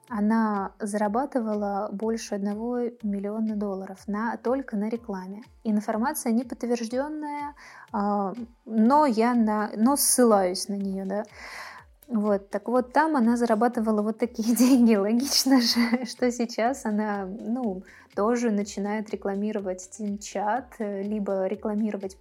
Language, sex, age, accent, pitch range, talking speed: Russian, female, 20-39, native, 205-245 Hz, 115 wpm